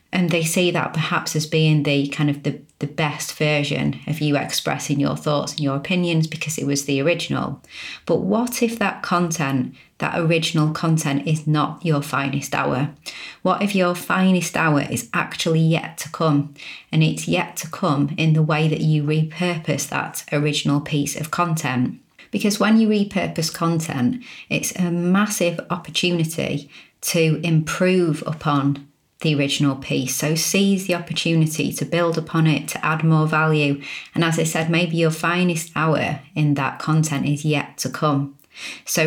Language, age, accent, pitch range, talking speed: English, 30-49, British, 145-170 Hz, 165 wpm